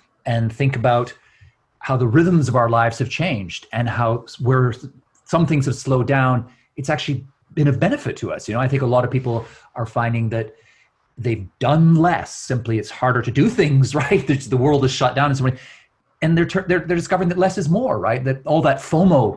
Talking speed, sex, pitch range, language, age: 215 wpm, male, 120-140 Hz, English, 30-49